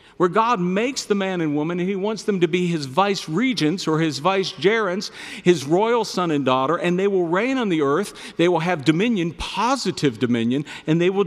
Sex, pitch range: male, 140-195 Hz